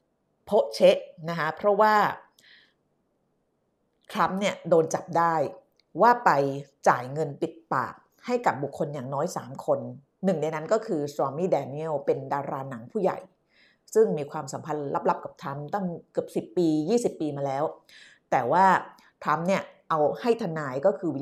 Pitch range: 150-205 Hz